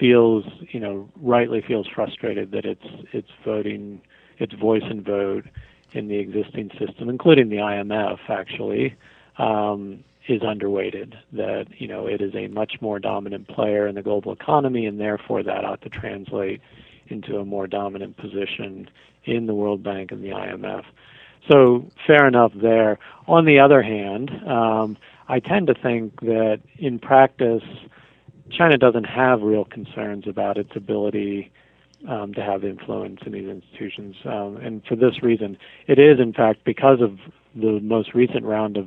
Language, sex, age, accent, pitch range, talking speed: English, male, 50-69, American, 105-120 Hz, 160 wpm